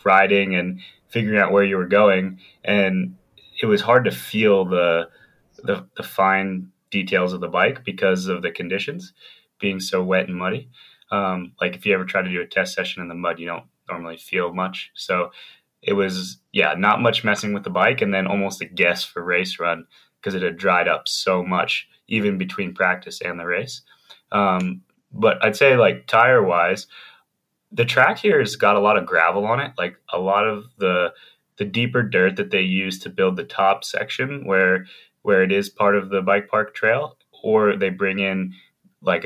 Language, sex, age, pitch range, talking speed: English, male, 20-39, 90-100 Hz, 200 wpm